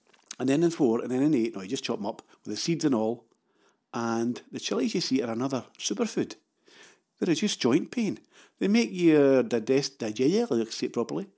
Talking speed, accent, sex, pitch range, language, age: 200 wpm, British, male, 115-160 Hz, English, 50-69